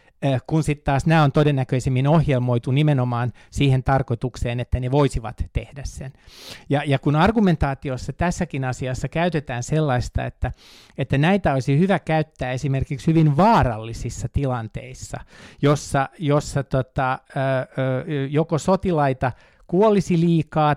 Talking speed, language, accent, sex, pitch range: 120 wpm, Finnish, native, male, 130-155 Hz